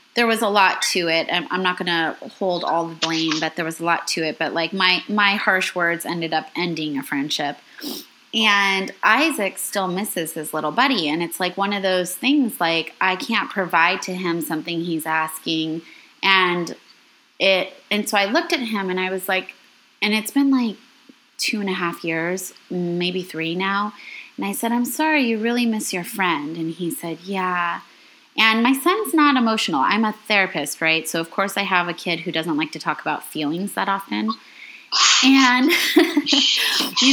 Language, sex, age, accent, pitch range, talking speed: English, female, 20-39, American, 170-235 Hz, 195 wpm